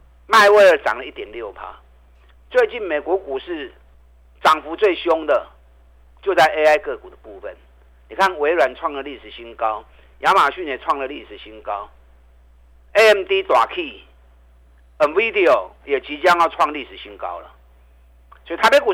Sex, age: male, 50-69